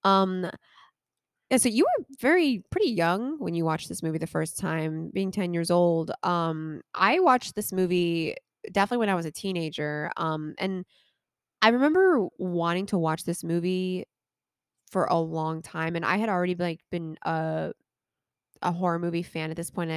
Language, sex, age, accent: English, female, 20-39, American